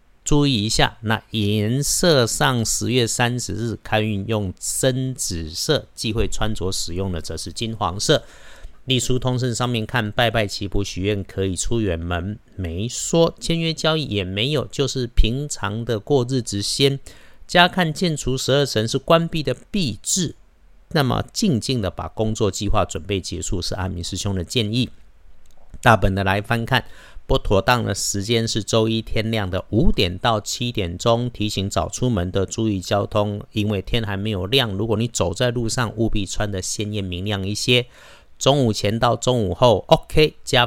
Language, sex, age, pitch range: Chinese, male, 50-69, 95-125 Hz